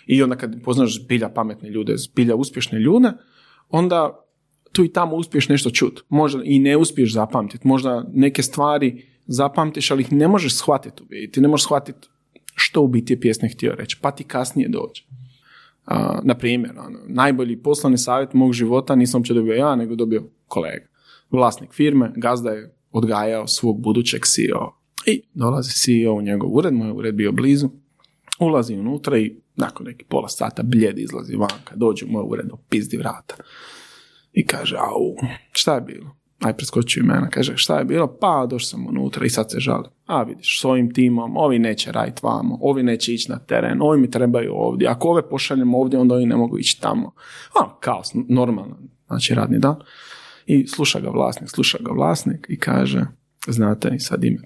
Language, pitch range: Croatian, 115-145 Hz